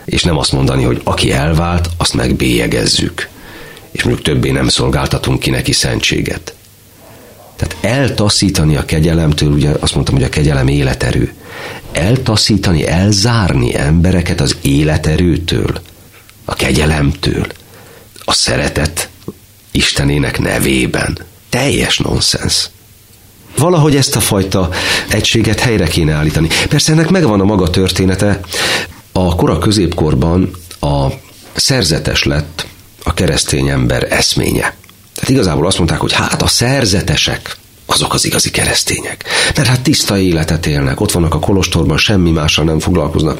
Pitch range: 80-105 Hz